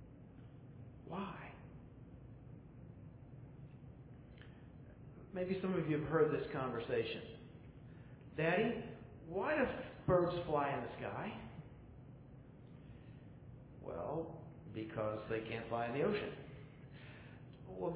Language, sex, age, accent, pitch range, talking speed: English, male, 50-69, American, 130-175 Hz, 85 wpm